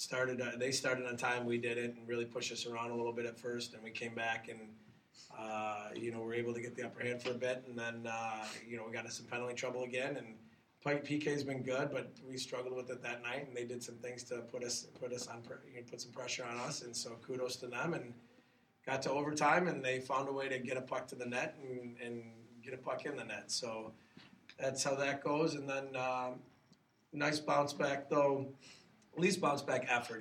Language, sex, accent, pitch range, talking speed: English, male, American, 115-130 Hz, 245 wpm